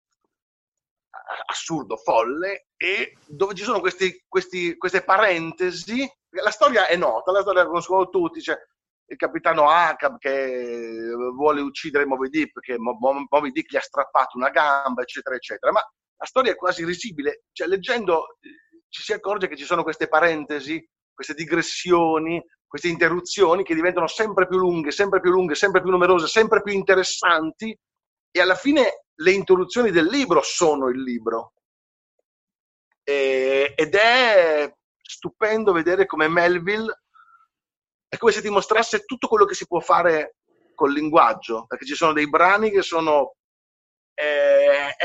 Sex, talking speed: male, 145 wpm